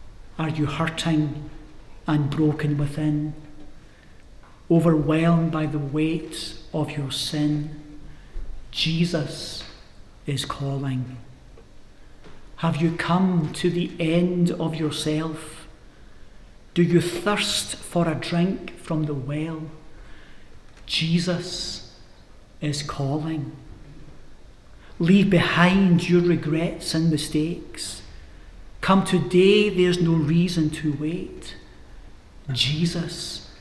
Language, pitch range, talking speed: English, 135-165 Hz, 90 wpm